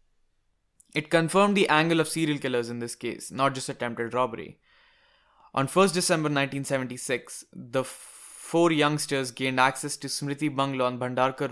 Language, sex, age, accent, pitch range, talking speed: English, male, 20-39, Indian, 125-145 Hz, 150 wpm